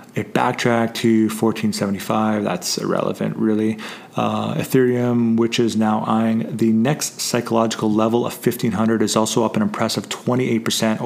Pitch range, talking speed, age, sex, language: 110-115 Hz, 135 wpm, 30-49, male, English